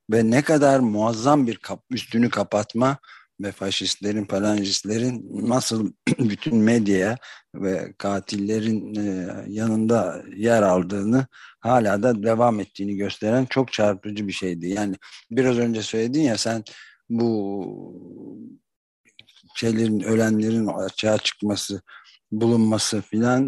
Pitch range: 100-120 Hz